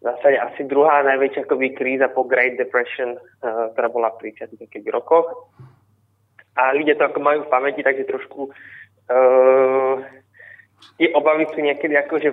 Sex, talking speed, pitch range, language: male, 140 wpm, 120-140 Hz, Slovak